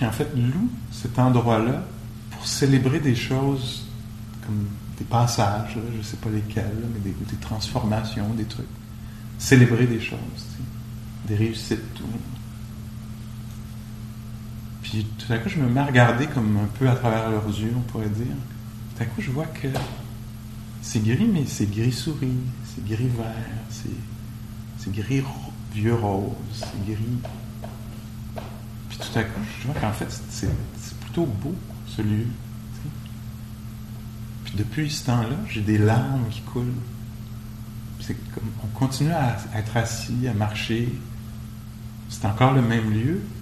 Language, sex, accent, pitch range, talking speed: English, male, French, 110-115 Hz, 160 wpm